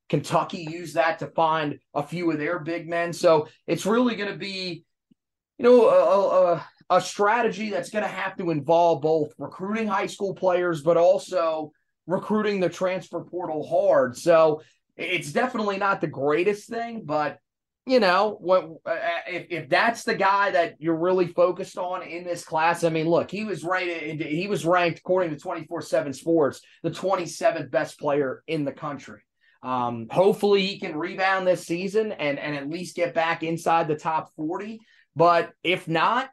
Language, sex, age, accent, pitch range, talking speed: English, male, 30-49, American, 165-190 Hz, 175 wpm